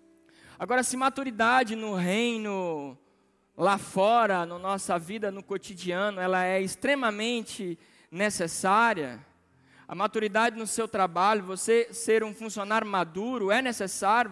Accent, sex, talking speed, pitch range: Brazilian, male, 115 wpm, 190-235 Hz